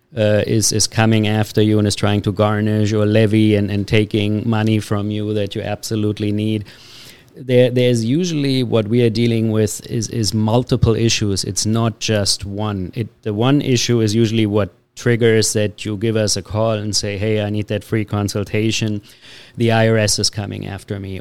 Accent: German